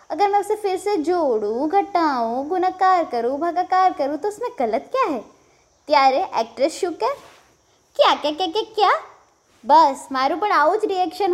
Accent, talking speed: native, 145 wpm